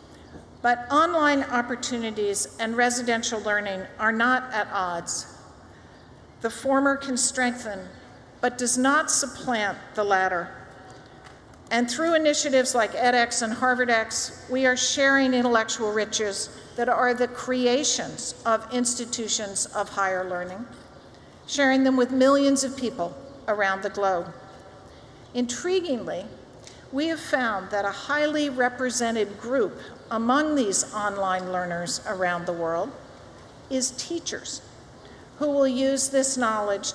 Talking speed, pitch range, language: 120 wpm, 210-260 Hz, English